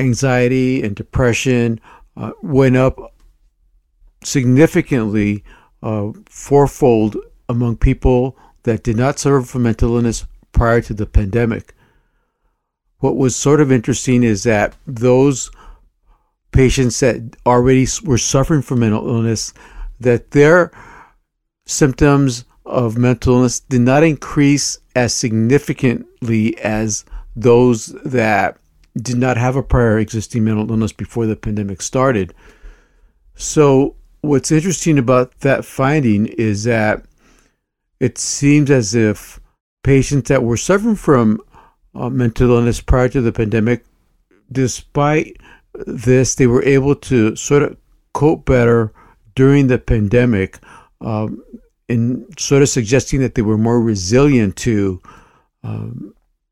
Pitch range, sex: 110-135 Hz, male